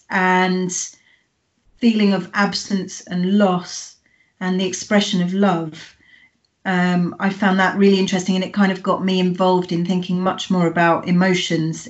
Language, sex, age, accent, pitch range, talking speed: English, female, 30-49, British, 175-195 Hz, 150 wpm